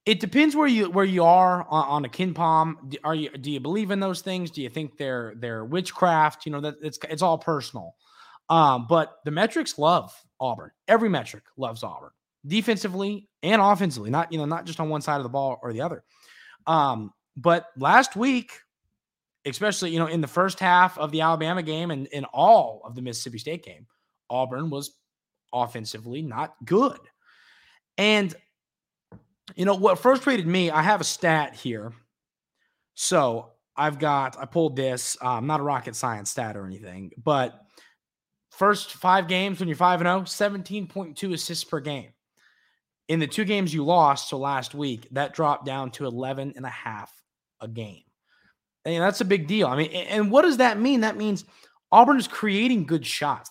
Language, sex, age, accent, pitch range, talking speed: English, male, 20-39, American, 140-195 Hz, 180 wpm